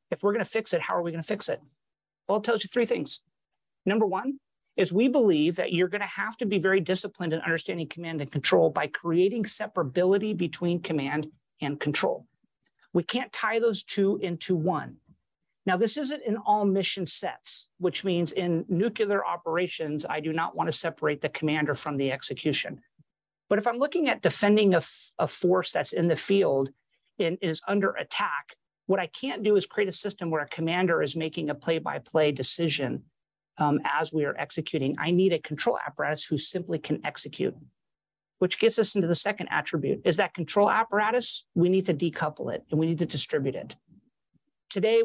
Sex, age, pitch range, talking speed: male, 40-59, 160-205 Hz, 190 wpm